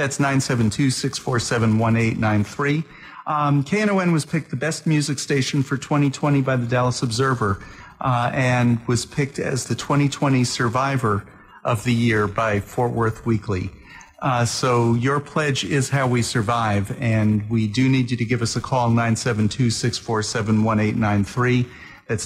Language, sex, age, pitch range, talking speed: English, male, 50-69, 110-135 Hz, 135 wpm